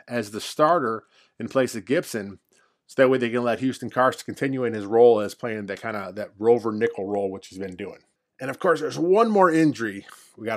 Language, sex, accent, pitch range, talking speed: English, male, American, 115-150 Hz, 235 wpm